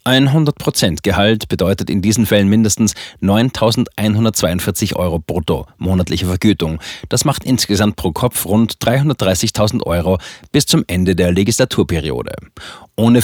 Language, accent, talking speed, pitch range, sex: German, German, 120 wpm, 95-125 Hz, male